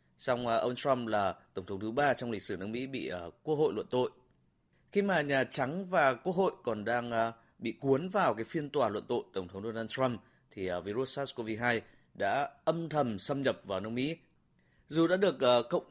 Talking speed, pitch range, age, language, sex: 205 wpm, 110-145 Hz, 20-39, Vietnamese, male